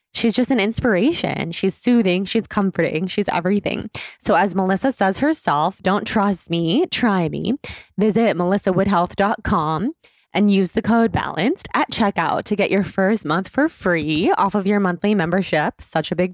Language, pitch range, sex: English, 180-230 Hz, female